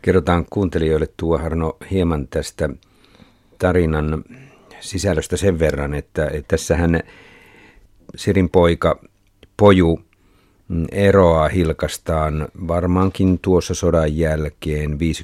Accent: native